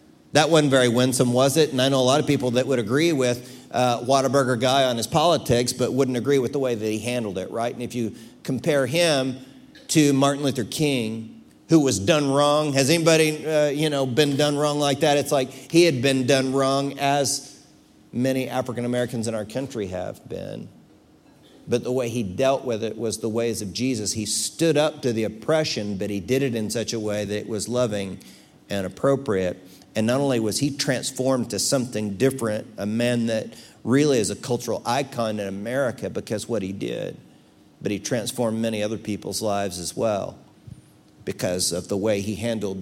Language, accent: English, American